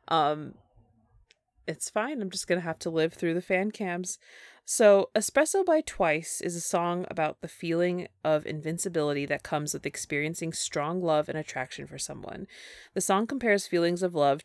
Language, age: English, 20-39